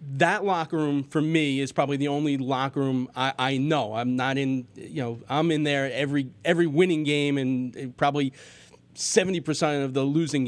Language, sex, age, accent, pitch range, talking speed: English, male, 30-49, American, 140-170 Hz, 185 wpm